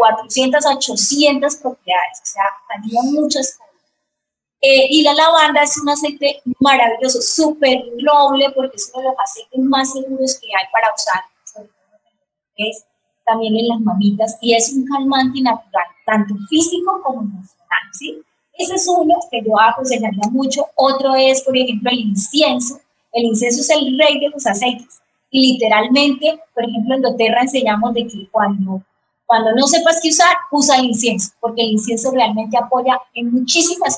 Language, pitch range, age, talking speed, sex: Spanish, 220-275 Hz, 20-39, 155 wpm, female